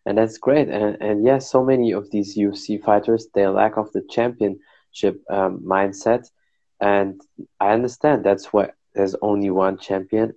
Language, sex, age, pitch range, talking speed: German, male, 20-39, 95-110 Hz, 170 wpm